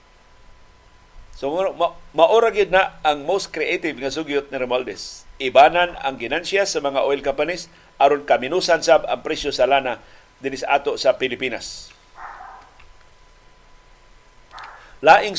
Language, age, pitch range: Filipino, 50-69, 120-160 Hz